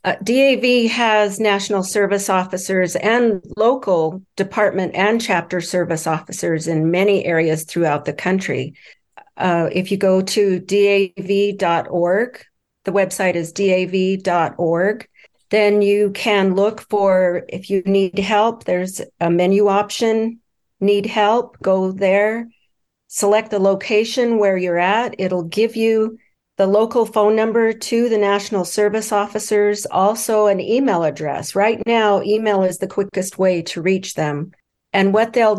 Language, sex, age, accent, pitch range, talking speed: English, female, 50-69, American, 185-215 Hz, 135 wpm